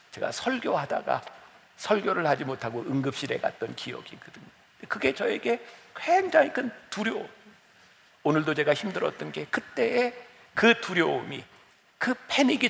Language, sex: Korean, male